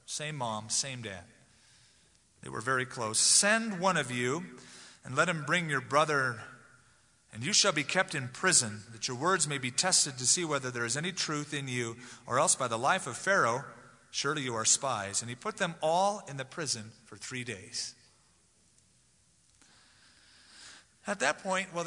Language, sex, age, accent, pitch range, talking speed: English, male, 40-59, American, 115-165 Hz, 180 wpm